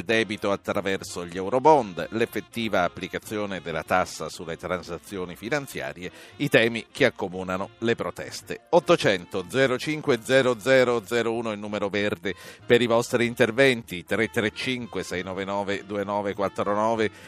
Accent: native